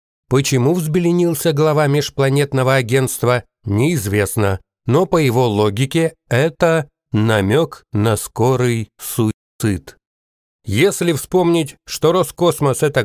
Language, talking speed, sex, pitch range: Russian, 90 wpm, male, 120-160 Hz